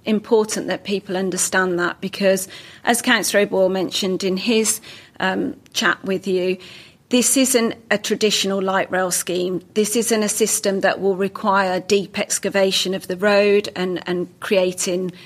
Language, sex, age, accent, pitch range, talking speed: English, female, 40-59, British, 180-205 Hz, 150 wpm